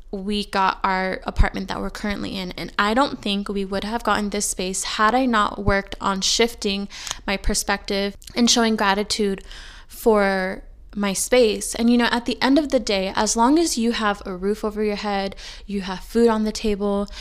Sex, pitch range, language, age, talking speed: female, 200-230 Hz, English, 20-39, 200 wpm